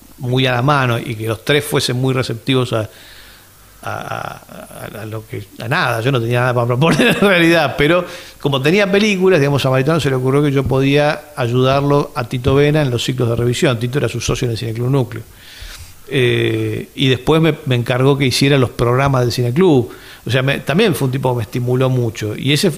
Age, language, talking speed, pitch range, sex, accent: 40-59, English, 215 wpm, 115-145 Hz, male, Argentinian